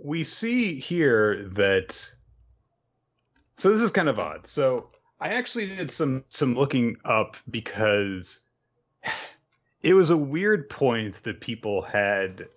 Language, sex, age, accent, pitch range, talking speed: English, male, 30-49, American, 115-155 Hz, 130 wpm